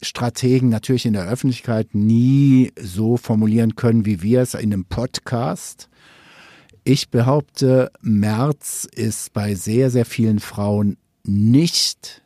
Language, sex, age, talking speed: German, male, 50-69, 120 wpm